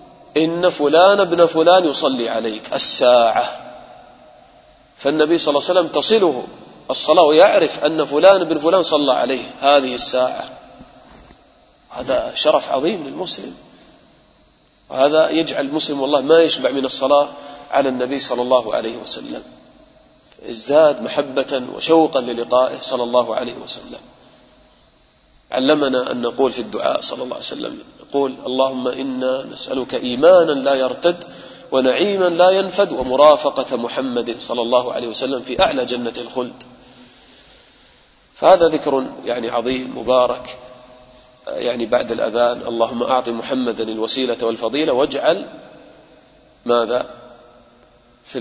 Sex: male